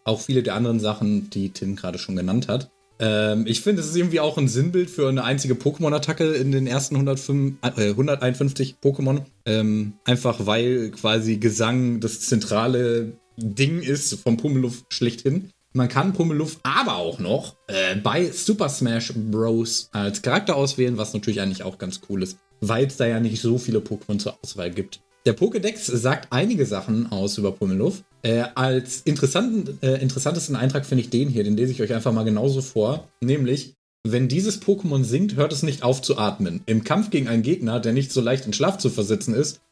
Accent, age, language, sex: German, 40-59, German, male